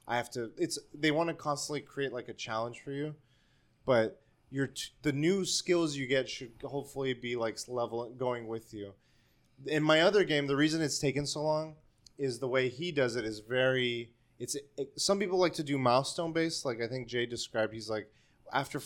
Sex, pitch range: male, 115-145 Hz